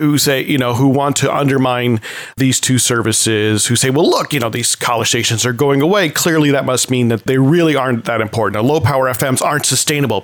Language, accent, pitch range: English, American, 120-160 Hz